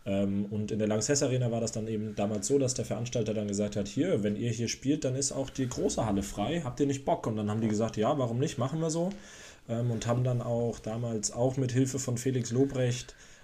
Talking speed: 245 wpm